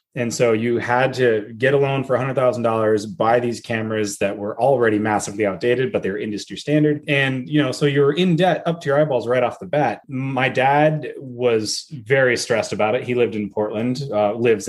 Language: English